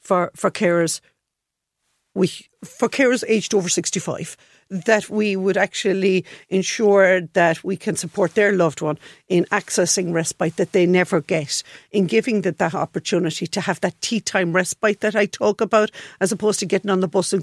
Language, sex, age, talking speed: English, female, 50-69, 175 wpm